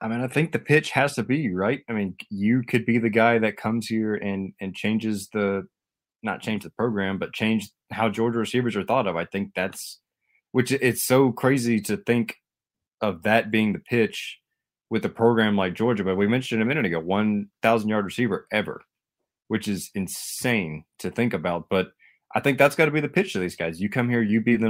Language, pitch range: English, 95-115 Hz